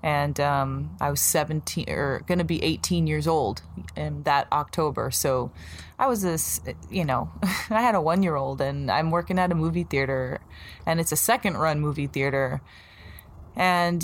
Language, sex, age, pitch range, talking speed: English, female, 20-39, 145-170 Hz, 170 wpm